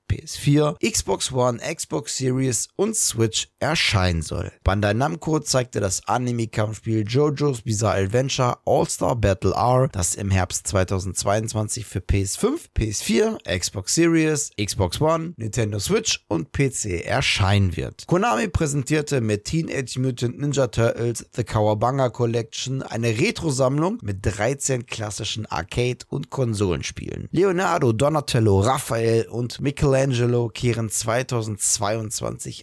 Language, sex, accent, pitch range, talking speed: German, male, German, 105-135 Hz, 115 wpm